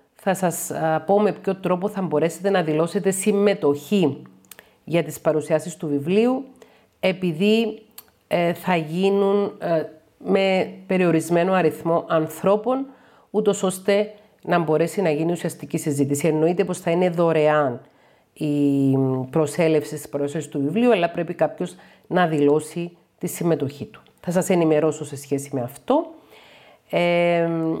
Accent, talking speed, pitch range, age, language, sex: native, 130 wpm, 155-205 Hz, 40-59, Greek, female